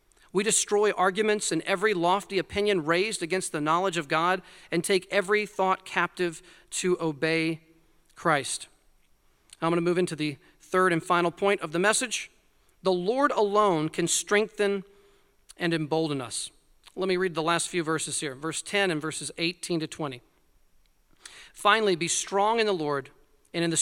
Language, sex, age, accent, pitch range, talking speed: English, male, 40-59, American, 165-200 Hz, 165 wpm